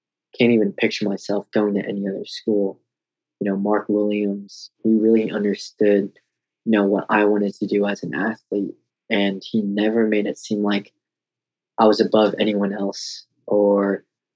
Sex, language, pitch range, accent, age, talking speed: male, English, 100-105 Hz, American, 20-39, 165 wpm